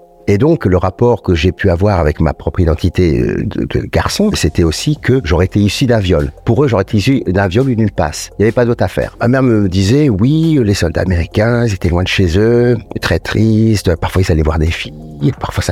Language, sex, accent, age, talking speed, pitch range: French, male, French, 50-69, 235 wpm, 85-110 Hz